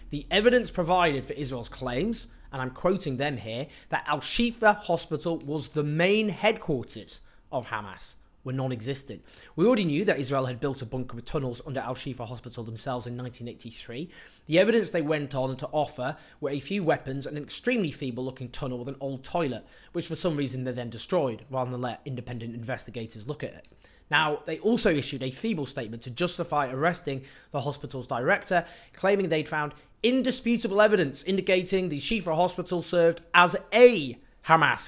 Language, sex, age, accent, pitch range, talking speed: English, male, 20-39, British, 125-175 Hz, 170 wpm